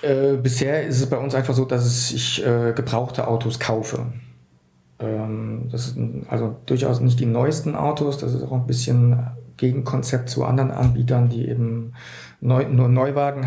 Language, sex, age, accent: German, male, 50-69, German